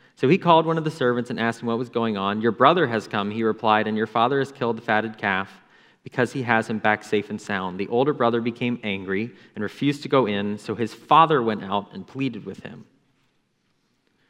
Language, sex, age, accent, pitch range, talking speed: English, male, 30-49, American, 105-140 Hz, 230 wpm